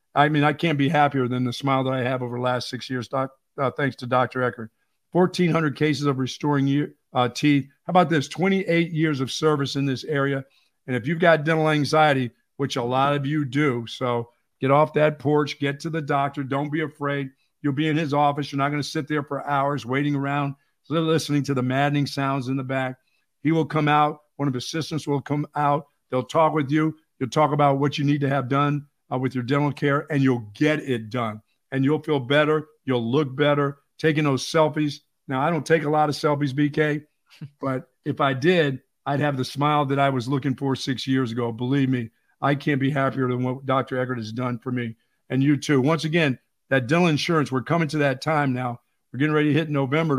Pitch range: 130-155 Hz